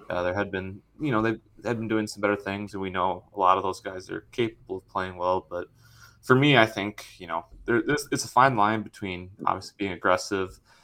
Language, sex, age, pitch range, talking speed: English, male, 20-39, 95-110 Hz, 240 wpm